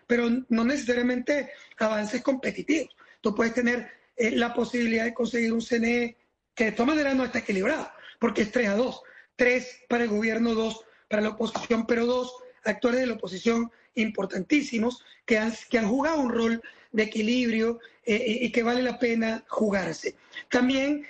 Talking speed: 165 wpm